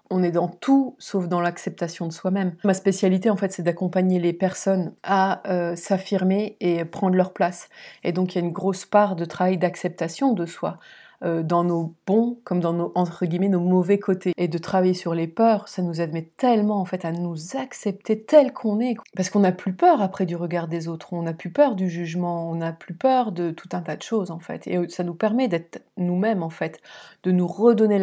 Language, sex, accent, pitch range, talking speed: French, female, French, 170-200 Hz, 225 wpm